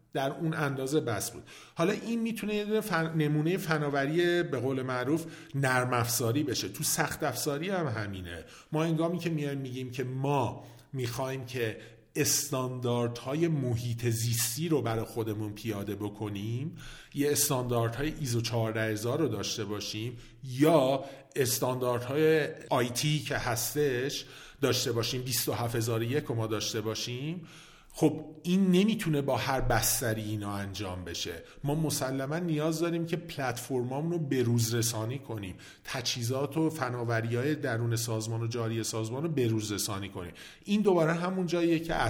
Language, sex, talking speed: Persian, male, 140 wpm